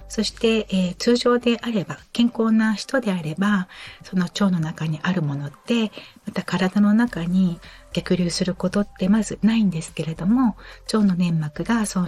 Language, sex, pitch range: Japanese, female, 165-215 Hz